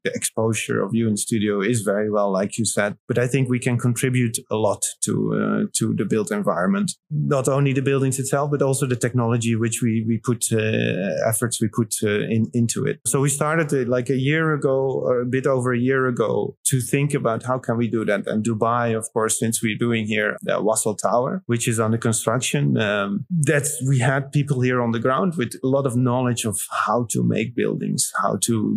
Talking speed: 225 wpm